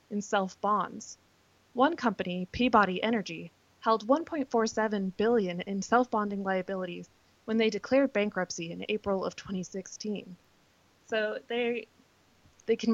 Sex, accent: female, American